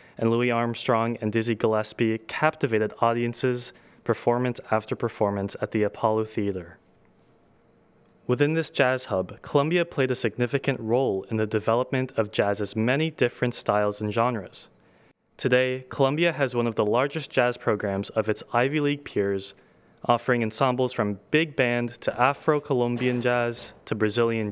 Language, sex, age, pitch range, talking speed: English, male, 20-39, 110-130 Hz, 140 wpm